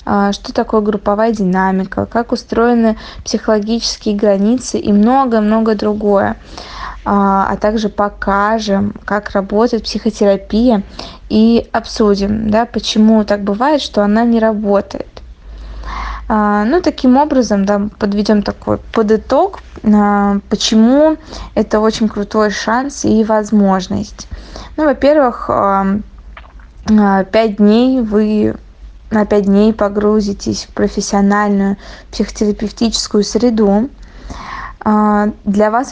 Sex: female